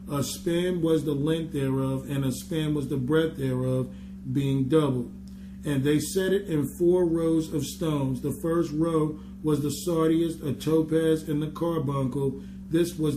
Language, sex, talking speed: English, male, 170 wpm